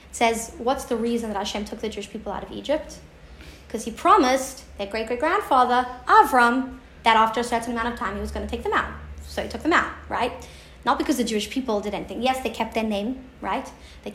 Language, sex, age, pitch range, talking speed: English, female, 30-49, 225-295 Hz, 225 wpm